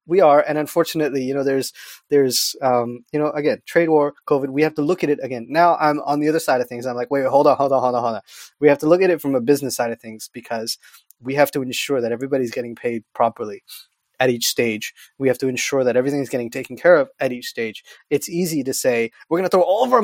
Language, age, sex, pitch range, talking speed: English, 20-39, male, 120-155 Hz, 265 wpm